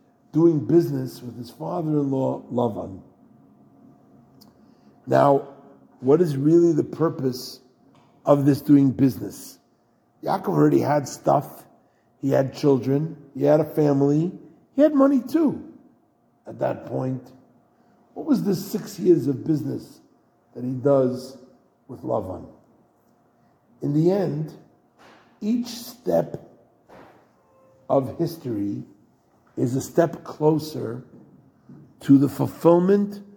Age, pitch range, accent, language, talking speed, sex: 50-69, 135-180 Hz, American, English, 110 wpm, male